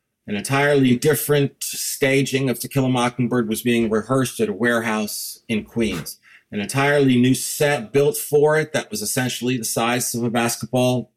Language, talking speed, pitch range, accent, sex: English, 170 wpm, 115-140 Hz, American, male